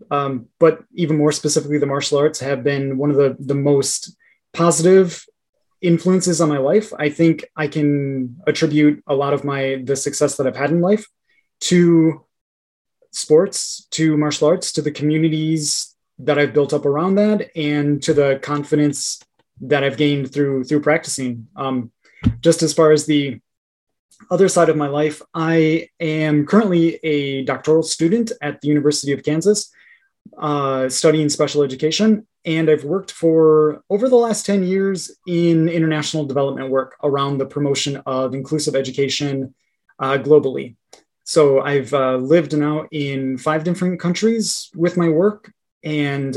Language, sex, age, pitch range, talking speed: English, male, 20-39, 140-165 Hz, 155 wpm